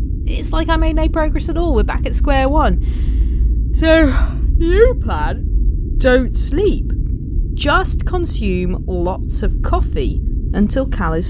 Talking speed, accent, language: 140 wpm, British, English